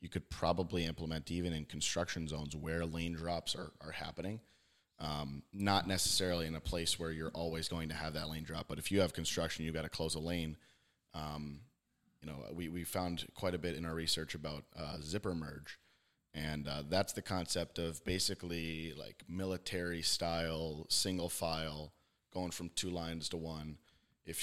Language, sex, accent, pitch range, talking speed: English, male, American, 80-95 Hz, 185 wpm